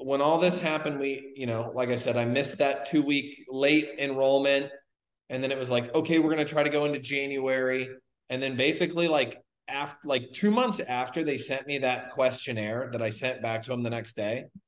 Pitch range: 120-145 Hz